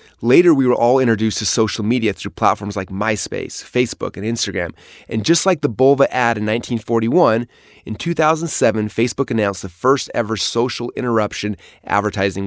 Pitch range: 100-130 Hz